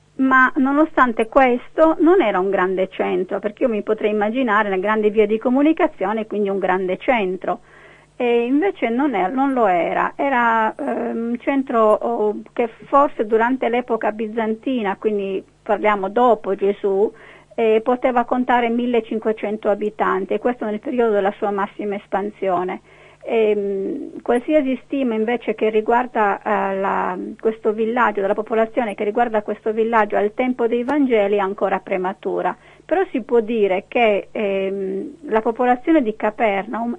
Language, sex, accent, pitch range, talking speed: Italian, female, native, 205-255 Hz, 140 wpm